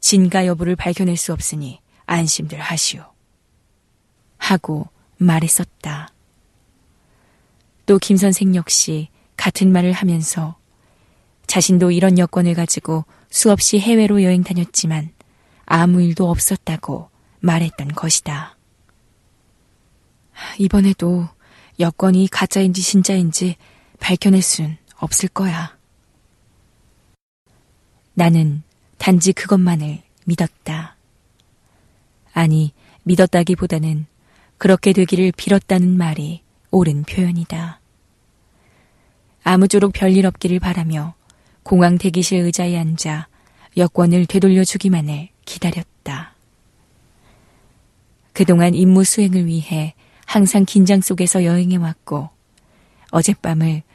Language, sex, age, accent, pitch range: Korean, female, 20-39, native, 155-185 Hz